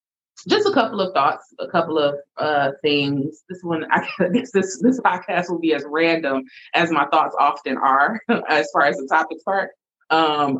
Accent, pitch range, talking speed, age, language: American, 135-185 Hz, 185 wpm, 20-39, English